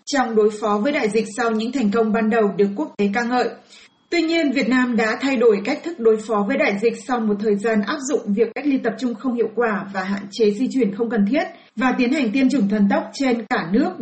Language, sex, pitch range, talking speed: Vietnamese, female, 215-255 Hz, 270 wpm